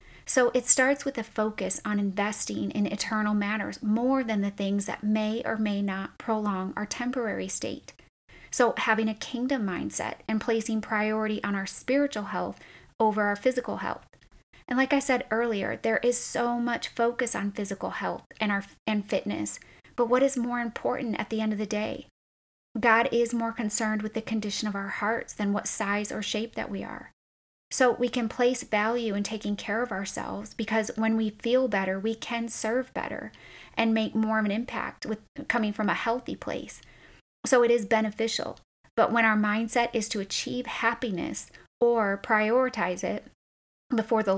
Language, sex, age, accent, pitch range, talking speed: English, female, 30-49, American, 210-240 Hz, 180 wpm